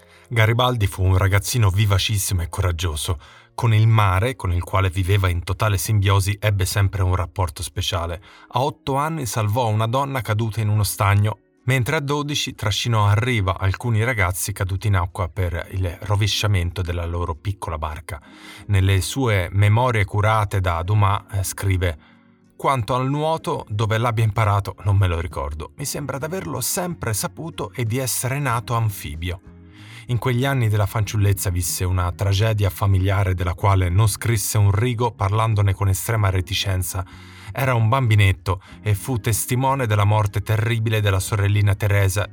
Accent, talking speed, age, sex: native, 155 wpm, 30-49, male